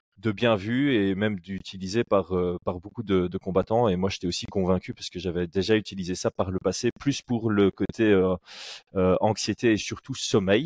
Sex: male